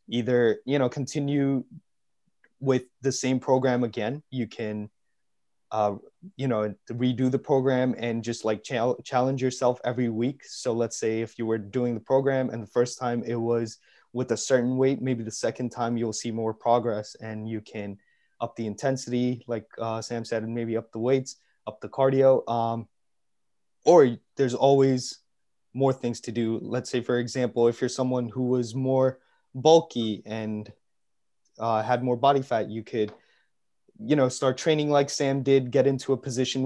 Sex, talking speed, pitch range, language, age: male, 175 wpm, 115-135 Hz, English, 20-39